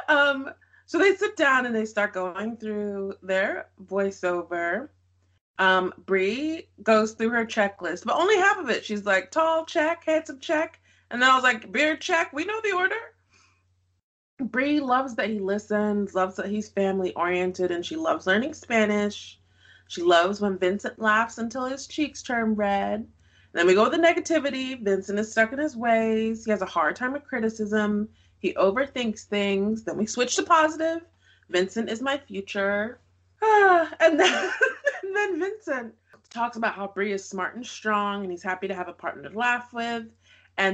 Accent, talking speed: American, 180 wpm